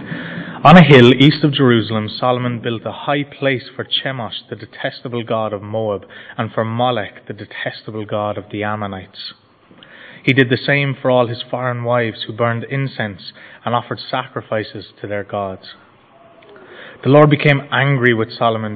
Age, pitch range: 20-39, 110-130 Hz